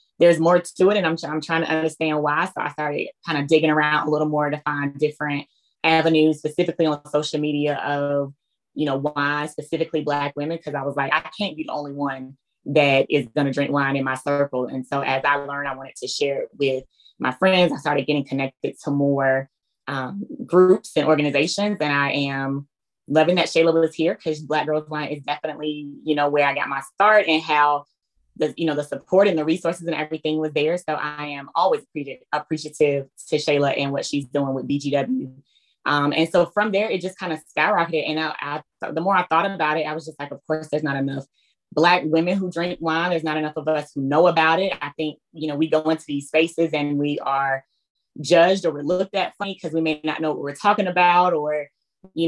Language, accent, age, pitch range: English, American, 20-39, 145-165 Hz